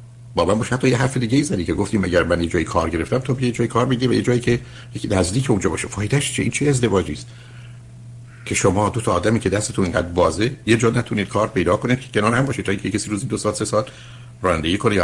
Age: 60-79